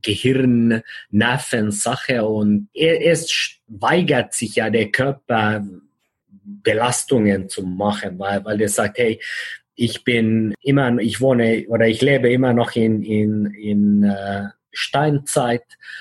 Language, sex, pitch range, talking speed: German, male, 105-125 Hz, 125 wpm